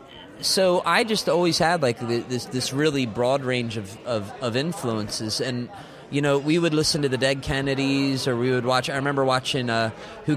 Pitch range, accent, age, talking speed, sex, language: 115-150 Hz, American, 30-49, 195 wpm, male, English